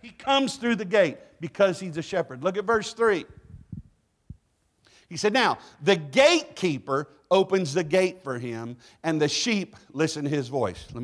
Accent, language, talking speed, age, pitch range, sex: American, English, 170 wpm, 50-69, 150-220 Hz, male